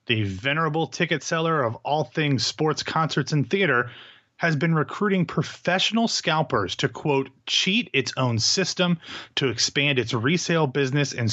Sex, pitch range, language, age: male, 120-160 Hz, English, 30-49